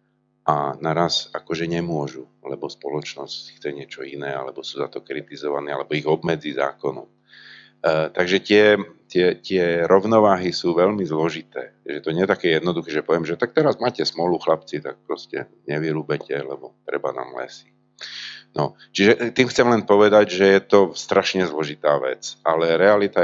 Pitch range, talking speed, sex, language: 75-90 Hz, 165 wpm, male, Slovak